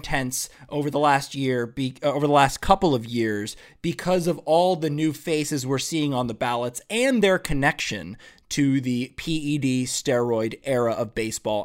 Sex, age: male, 20-39